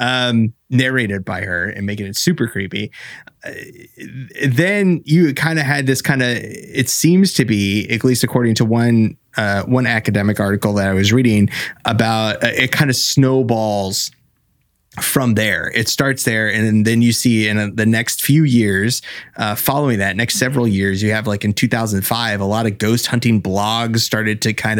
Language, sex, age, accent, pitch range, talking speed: English, male, 30-49, American, 105-130 Hz, 180 wpm